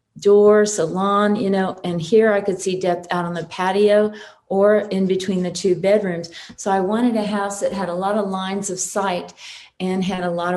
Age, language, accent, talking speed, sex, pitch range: 40-59, English, American, 210 wpm, female, 180-205 Hz